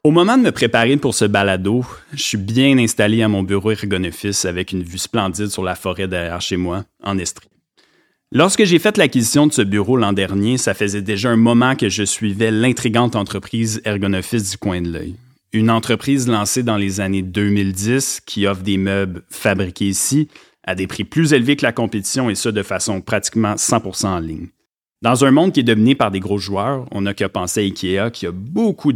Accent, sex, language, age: Canadian, male, French, 30-49